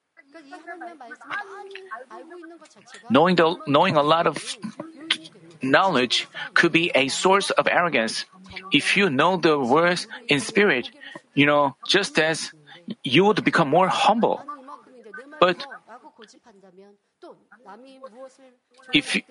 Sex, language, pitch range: male, Korean, 155-245 Hz